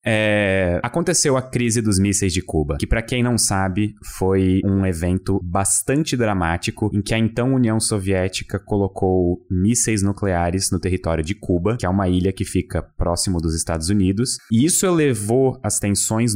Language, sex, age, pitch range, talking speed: Portuguese, male, 20-39, 95-120 Hz, 170 wpm